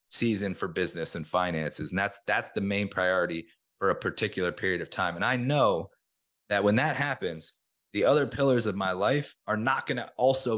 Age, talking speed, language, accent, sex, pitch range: 30-49, 200 wpm, English, American, male, 100-120 Hz